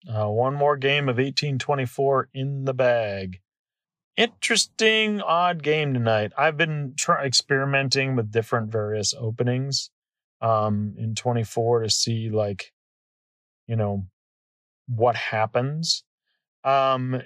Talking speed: 115 wpm